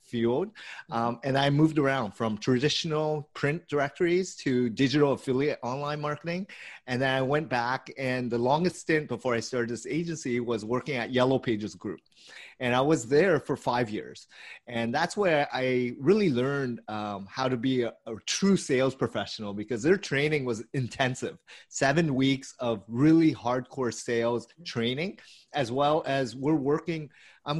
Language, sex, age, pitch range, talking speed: English, male, 30-49, 115-145 Hz, 165 wpm